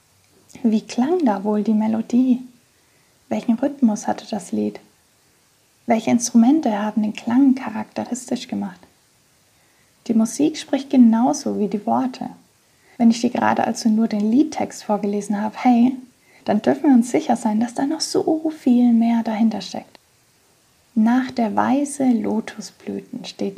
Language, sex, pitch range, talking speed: German, female, 215-260 Hz, 140 wpm